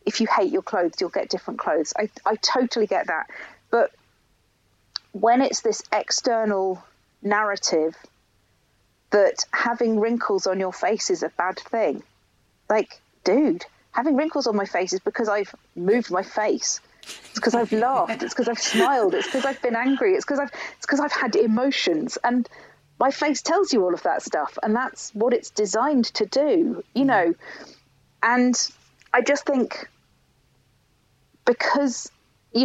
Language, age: English, 40-59